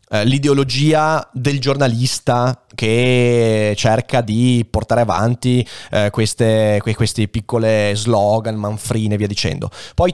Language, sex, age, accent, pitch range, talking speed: Italian, male, 20-39, native, 115-155 Hz, 110 wpm